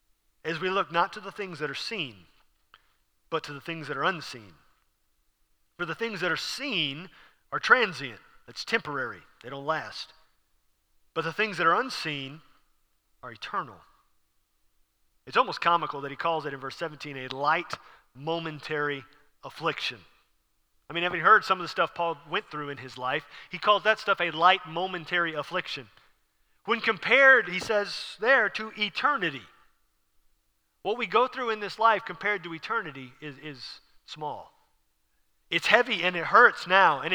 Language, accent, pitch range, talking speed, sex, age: English, American, 145-210 Hz, 165 wpm, male, 40-59